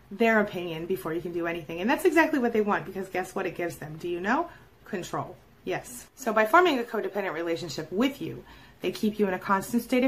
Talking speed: 230 wpm